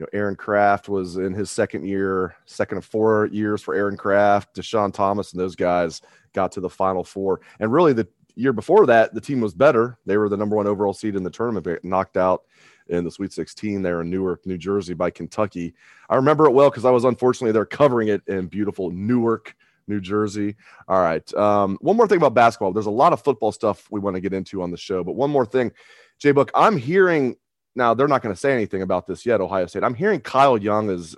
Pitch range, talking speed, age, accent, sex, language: 95-115 Hz, 240 wpm, 30-49, American, male, English